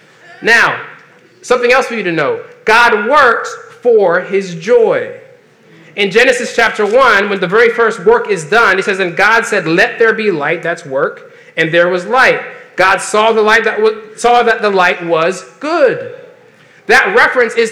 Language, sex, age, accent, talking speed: English, male, 30-49, American, 180 wpm